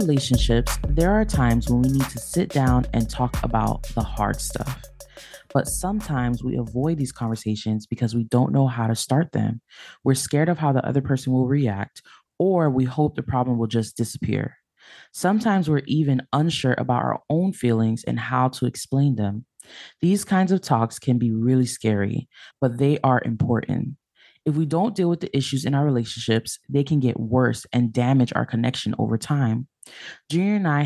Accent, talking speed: American, 185 wpm